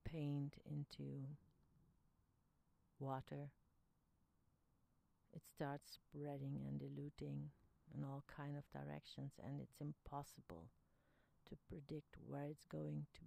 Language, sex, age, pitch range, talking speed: English, female, 60-79, 125-155 Hz, 95 wpm